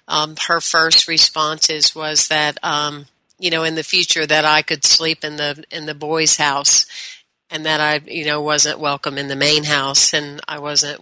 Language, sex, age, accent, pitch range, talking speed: English, female, 40-59, American, 150-170 Hz, 195 wpm